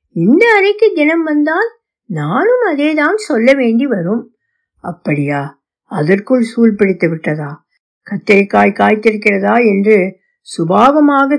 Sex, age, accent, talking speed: female, 60-79, native, 60 wpm